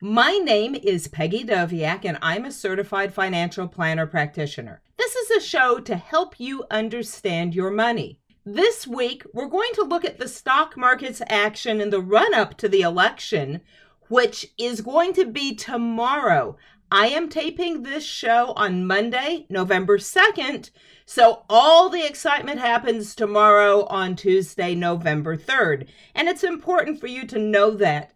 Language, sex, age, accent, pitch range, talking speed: English, female, 50-69, American, 195-275 Hz, 155 wpm